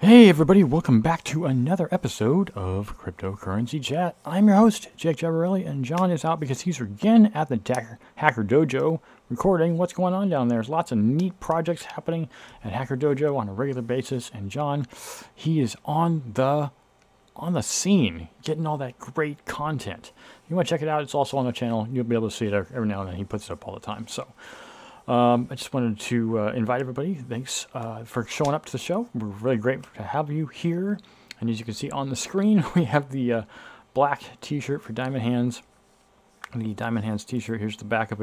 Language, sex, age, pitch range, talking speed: English, male, 40-59, 110-150 Hz, 215 wpm